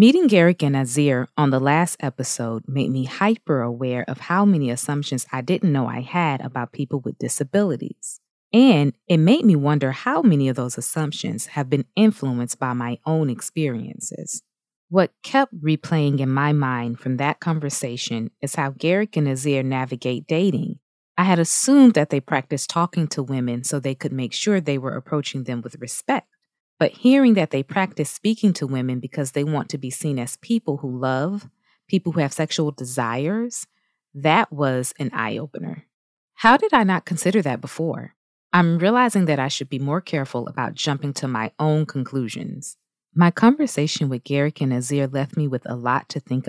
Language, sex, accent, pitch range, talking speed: English, female, American, 130-170 Hz, 180 wpm